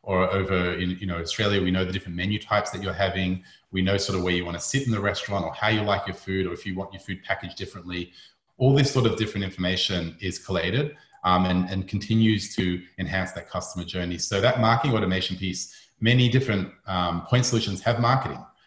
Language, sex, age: English, male, 30-49